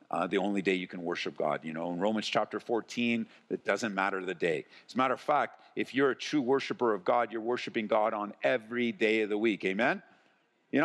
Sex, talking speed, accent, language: male, 230 wpm, American, English